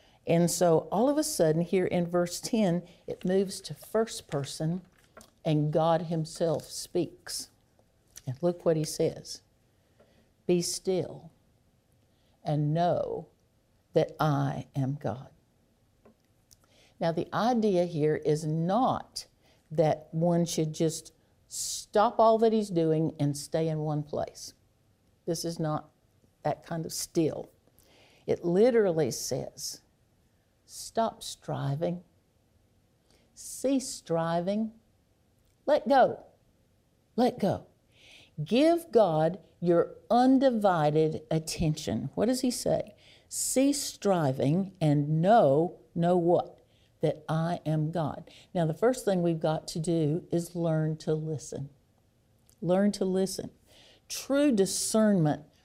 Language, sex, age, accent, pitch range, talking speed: English, female, 60-79, American, 150-190 Hz, 115 wpm